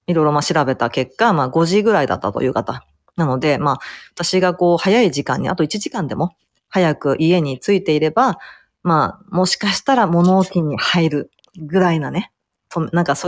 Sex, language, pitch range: female, Japanese, 150-195 Hz